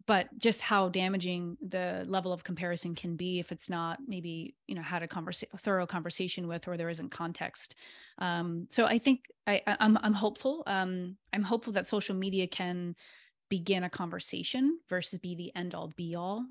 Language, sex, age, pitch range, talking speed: English, female, 20-39, 175-205 Hz, 190 wpm